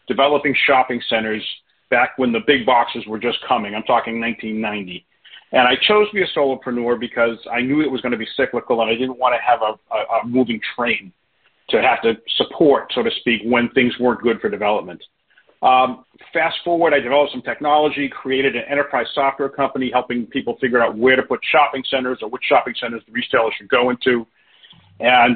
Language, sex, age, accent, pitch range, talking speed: English, male, 40-59, American, 120-140 Hz, 200 wpm